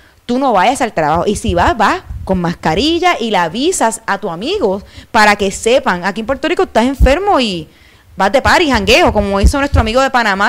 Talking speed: 210 wpm